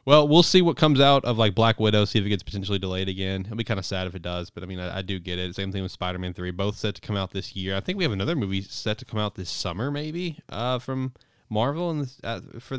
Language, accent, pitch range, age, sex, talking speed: English, American, 95-115 Hz, 20-39, male, 295 wpm